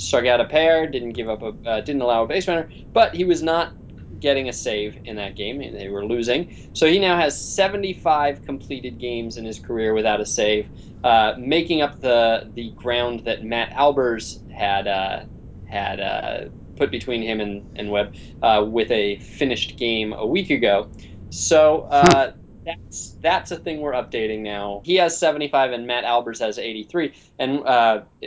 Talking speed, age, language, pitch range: 185 wpm, 20-39, English, 105-140 Hz